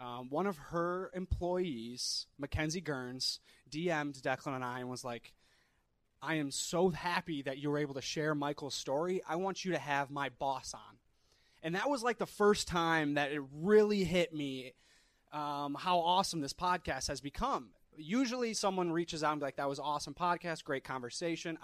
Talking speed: 190 wpm